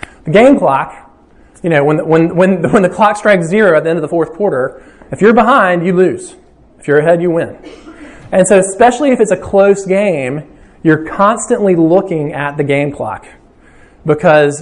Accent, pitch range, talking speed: American, 155-230 Hz, 195 wpm